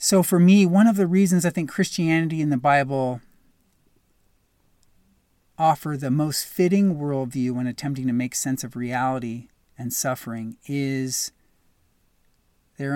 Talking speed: 135 wpm